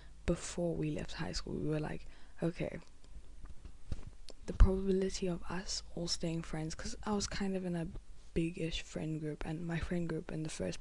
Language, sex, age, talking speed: English, female, 10-29, 185 wpm